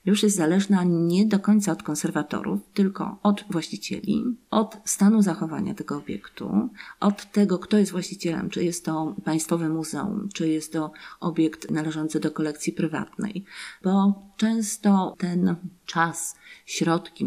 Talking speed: 135 wpm